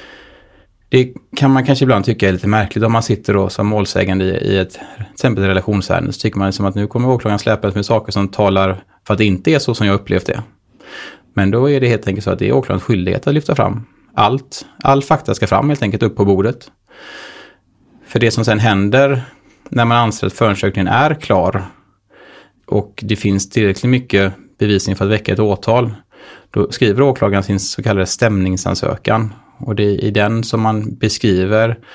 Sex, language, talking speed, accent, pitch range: male, Swedish, 205 wpm, Norwegian, 100-120 Hz